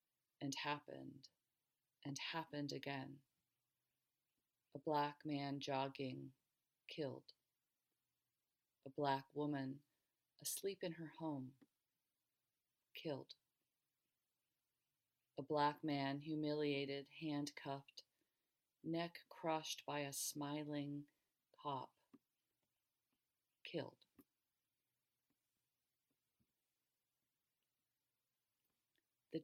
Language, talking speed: English, 65 wpm